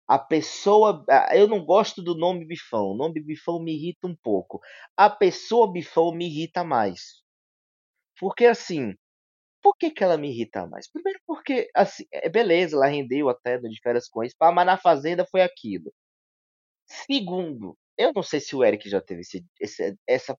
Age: 20-39